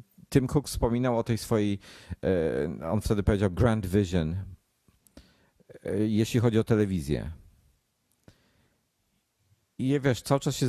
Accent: native